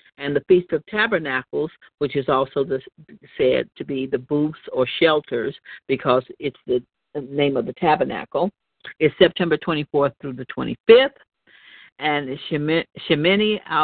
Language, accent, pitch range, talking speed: English, American, 150-185 Hz, 130 wpm